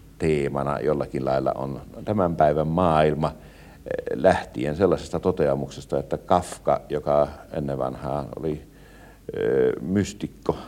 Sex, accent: male, native